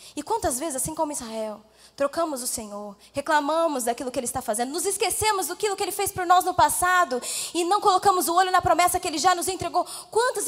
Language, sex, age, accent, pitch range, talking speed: Portuguese, female, 10-29, Brazilian, 245-365 Hz, 220 wpm